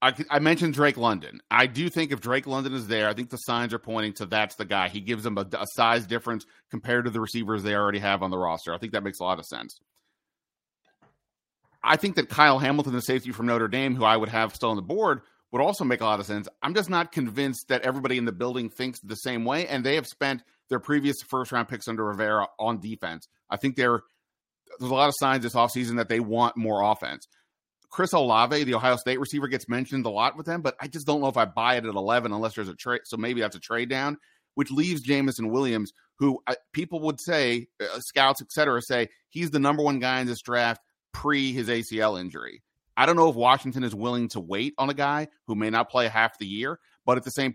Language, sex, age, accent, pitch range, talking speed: English, male, 30-49, American, 110-135 Hz, 245 wpm